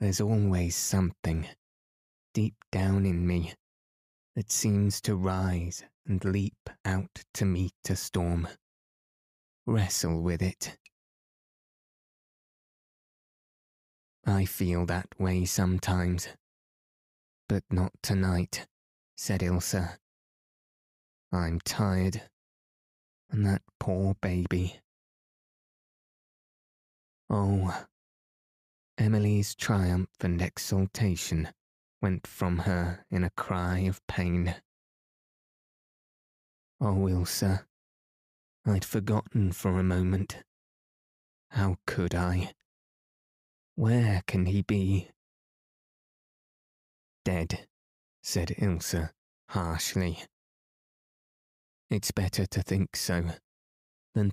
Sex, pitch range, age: male, 90-100 Hz, 20-39